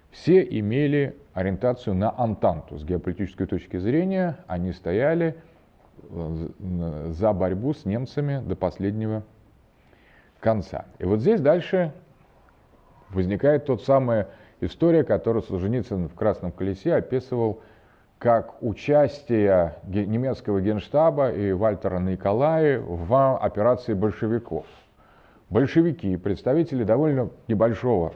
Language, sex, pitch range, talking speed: Russian, male, 95-135 Hz, 100 wpm